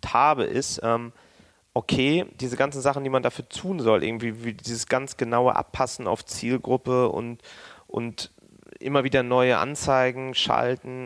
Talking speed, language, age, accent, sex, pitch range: 140 wpm, German, 30-49, German, male, 110-130 Hz